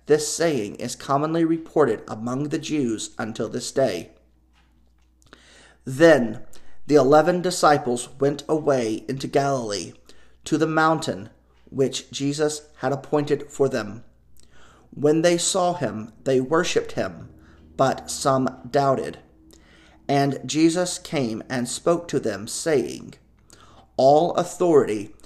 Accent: American